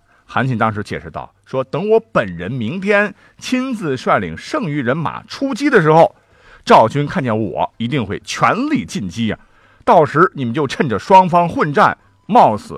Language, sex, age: Chinese, male, 50-69